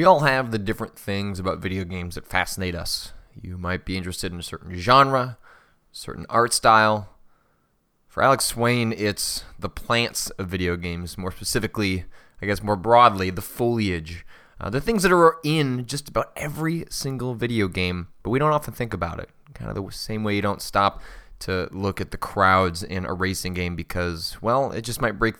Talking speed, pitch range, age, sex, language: 195 wpm, 95-115 Hz, 20-39, male, English